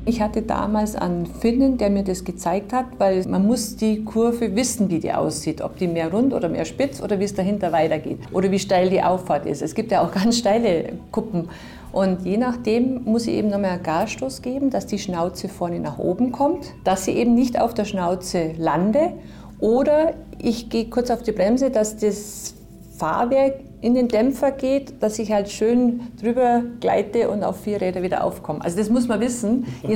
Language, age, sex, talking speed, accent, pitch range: German, 50-69, female, 200 wpm, German, 185-240 Hz